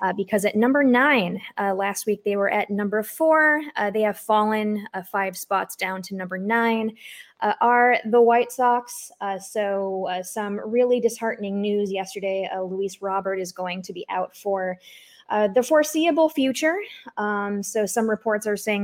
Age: 20-39